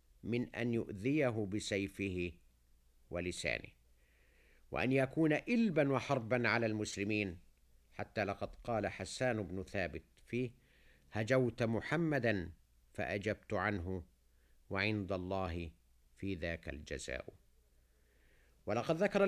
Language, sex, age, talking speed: Arabic, male, 50-69, 90 wpm